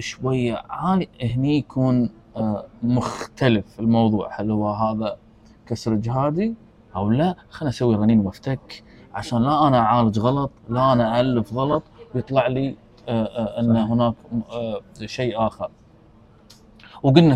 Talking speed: 115 wpm